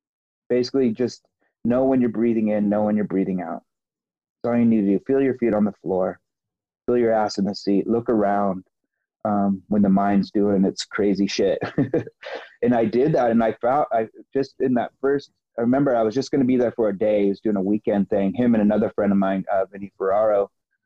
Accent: American